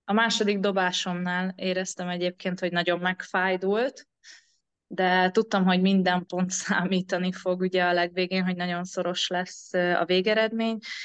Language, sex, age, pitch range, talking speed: Hungarian, female, 20-39, 175-200 Hz, 130 wpm